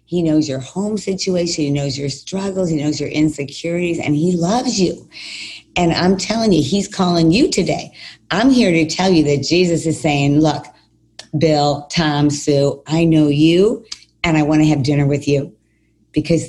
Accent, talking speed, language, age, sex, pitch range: American, 180 wpm, English, 50-69, female, 145-170 Hz